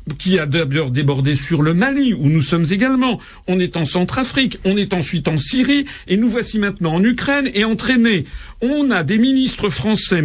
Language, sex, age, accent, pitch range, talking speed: French, male, 50-69, French, 150-210 Hz, 195 wpm